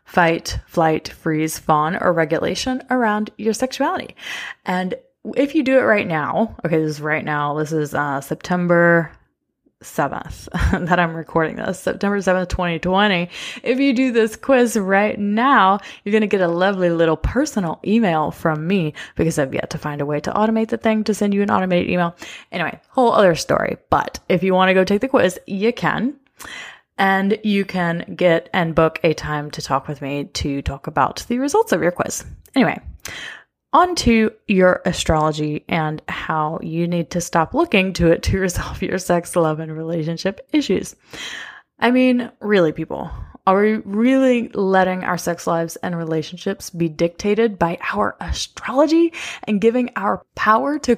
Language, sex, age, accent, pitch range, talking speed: English, female, 20-39, American, 165-220 Hz, 175 wpm